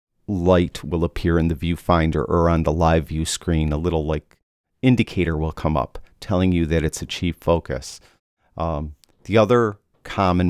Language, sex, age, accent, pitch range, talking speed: English, male, 50-69, American, 80-100 Hz, 165 wpm